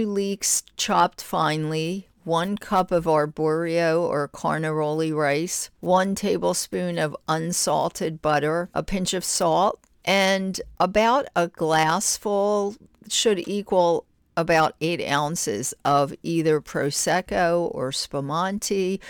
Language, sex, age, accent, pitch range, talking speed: English, female, 50-69, American, 155-190 Hz, 105 wpm